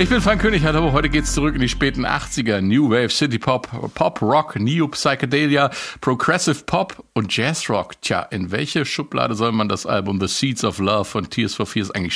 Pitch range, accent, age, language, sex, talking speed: 105-135 Hz, German, 50-69, German, male, 200 wpm